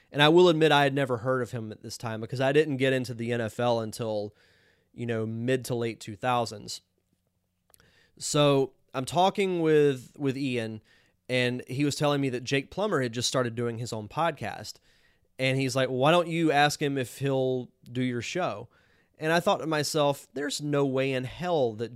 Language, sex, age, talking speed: English, male, 30-49, 195 wpm